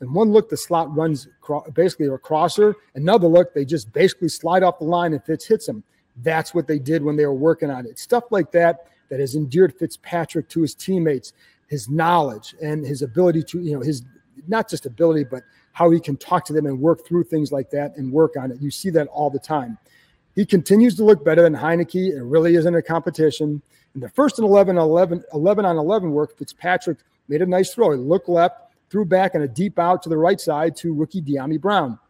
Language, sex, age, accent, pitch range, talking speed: English, male, 40-59, American, 150-190 Hz, 230 wpm